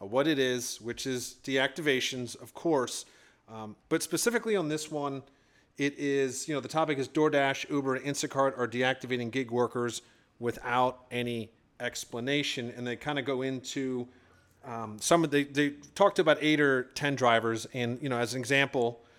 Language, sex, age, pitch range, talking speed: English, male, 30-49, 120-145 Hz, 170 wpm